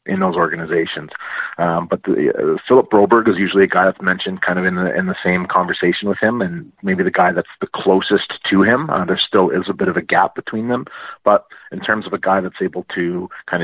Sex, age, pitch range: male, 30-49, 85-100 Hz